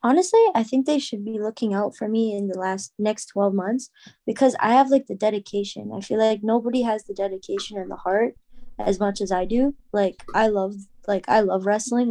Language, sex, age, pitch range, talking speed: English, female, 20-39, 195-235 Hz, 220 wpm